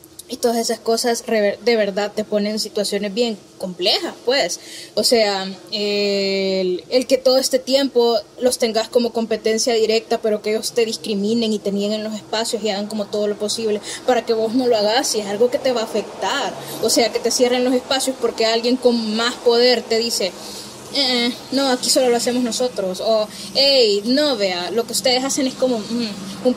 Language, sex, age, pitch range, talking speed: Spanish, female, 10-29, 210-250 Hz, 205 wpm